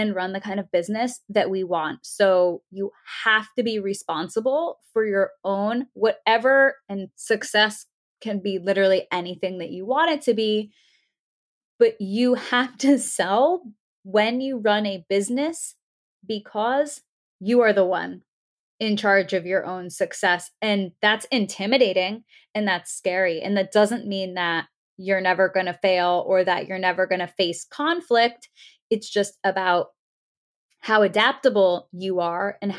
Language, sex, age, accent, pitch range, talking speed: English, female, 20-39, American, 190-235 Hz, 155 wpm